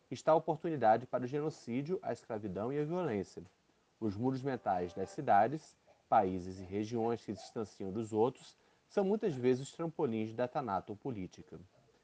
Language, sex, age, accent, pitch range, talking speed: Portuguese, male, 30-49, Brazilian, 110-160 Hz, 160 wpm